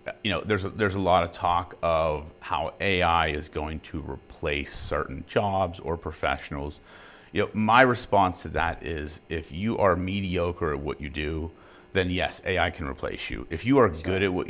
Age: 40-59